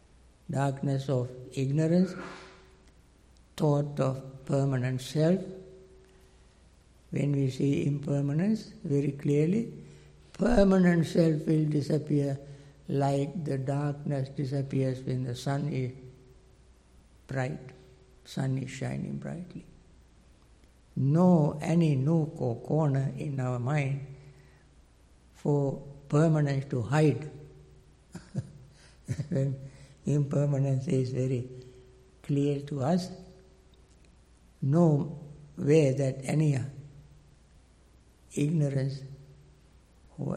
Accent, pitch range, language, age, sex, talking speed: Indian, 125-150 Hz, English, 60-79, male, 80 wpm